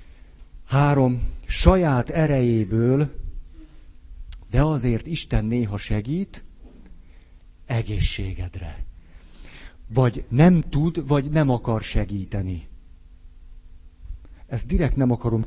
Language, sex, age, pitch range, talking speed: Hungarian, male, 50-69, 95-130 Hz, 80 wpm